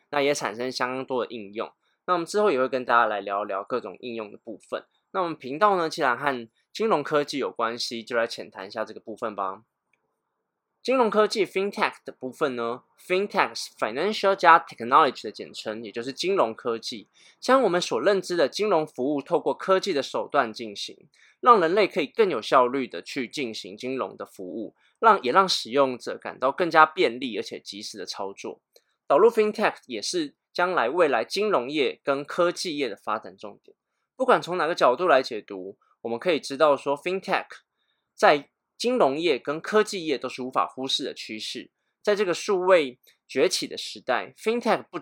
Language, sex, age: Chinese, male, 20-39